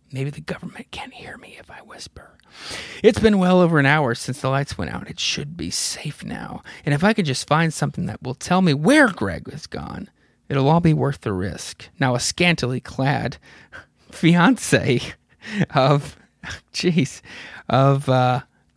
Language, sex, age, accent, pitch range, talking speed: English, male, 30-49, American, 130-180 Hz, 175 wpm